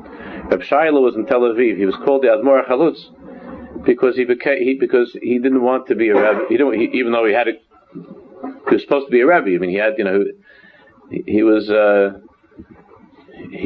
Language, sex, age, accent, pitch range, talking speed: English, male, 40-59, American, 100-130 Hz, 205 wpm